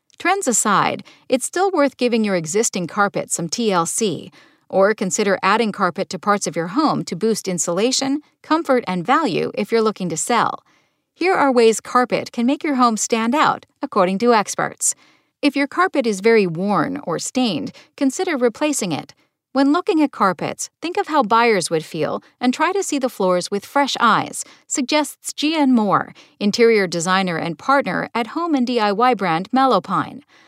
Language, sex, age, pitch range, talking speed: English, female, 50-69, 195-275 Hz, 170 wpm